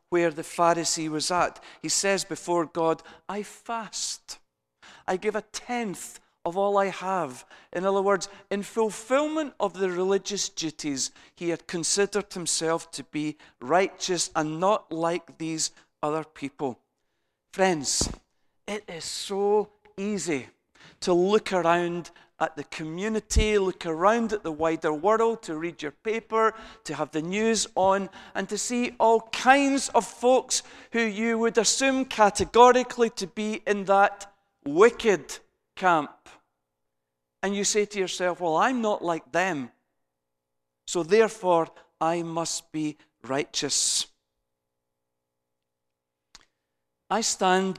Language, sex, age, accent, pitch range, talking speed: English, male, 40-59, British, 150-205 Hz, 130 wpm